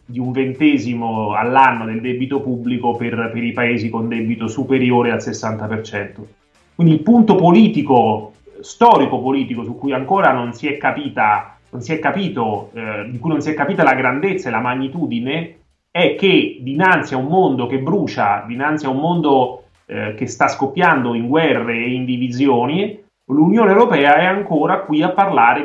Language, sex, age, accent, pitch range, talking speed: Italian, male, 30-49, native, 120-150 Hz, 160 wpm